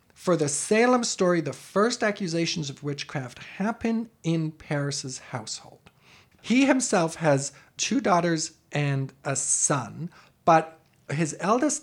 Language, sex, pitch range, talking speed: English, male, 145-195 Hz, 120 wpm